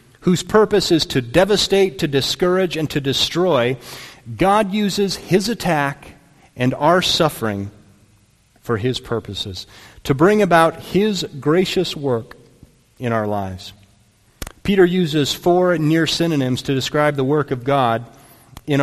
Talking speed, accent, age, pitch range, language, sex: 130 wpm, American, 40-59, 125-180 Hz, English, male